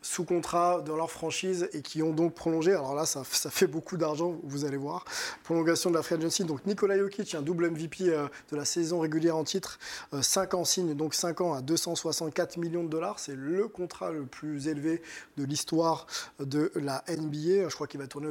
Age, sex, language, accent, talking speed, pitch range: 20-39, male, French, French, 215 wpm, 155-185 Hz